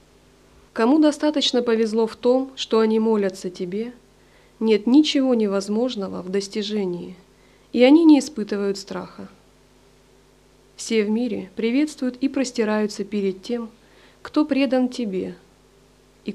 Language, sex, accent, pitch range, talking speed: Russian, female, native, 185-245 Hz, 115 wpm